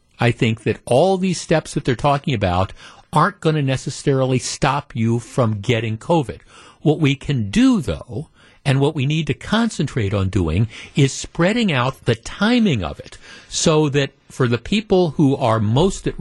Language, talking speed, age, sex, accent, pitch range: English, 180 wpm, 50-69, male, American, 115-160 Hz